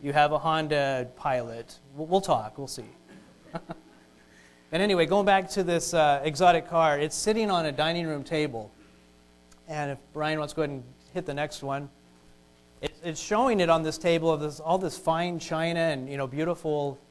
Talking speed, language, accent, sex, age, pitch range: 190 wpm, English, American, male, 30-49, 120-165 Hz